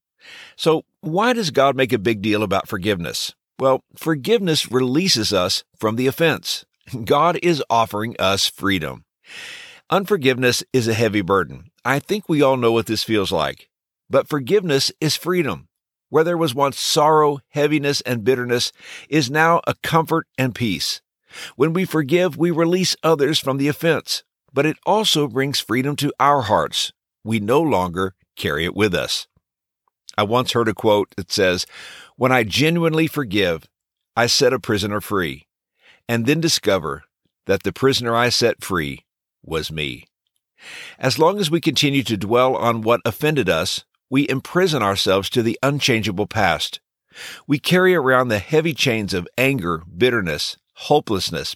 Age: 50-69